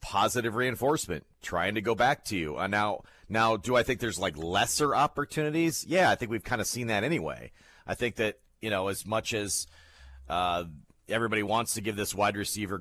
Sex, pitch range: male, 95-120 Hz